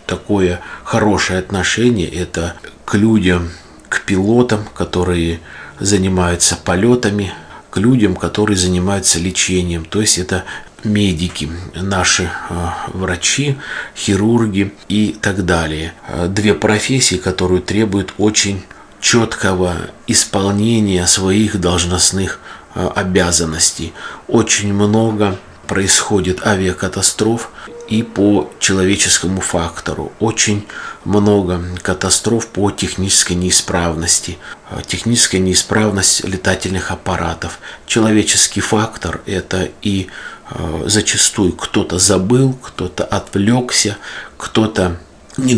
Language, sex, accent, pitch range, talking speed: Russian, male, native, 90-105 Hz, 85 wpm